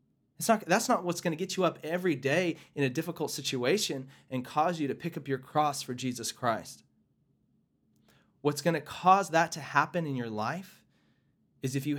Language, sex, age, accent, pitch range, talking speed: English, male, 30-49, American, 125-165 Hz, 195 wpm